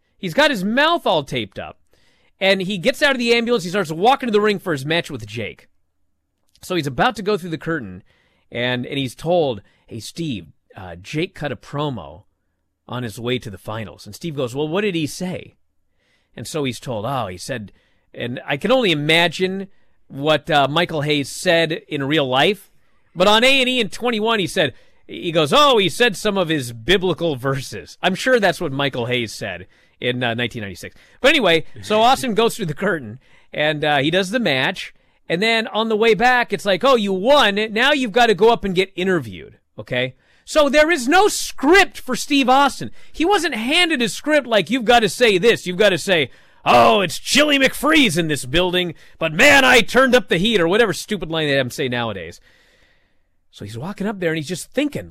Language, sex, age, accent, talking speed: English, male, 40-59, American, 210 wpm